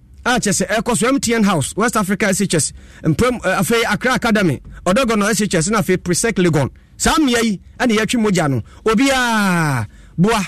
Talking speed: 195 wpm